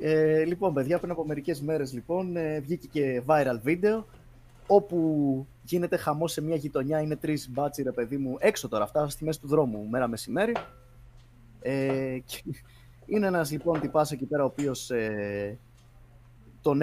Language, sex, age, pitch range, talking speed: Greek, male, 20-39, 125-185 Hz, 155 wpm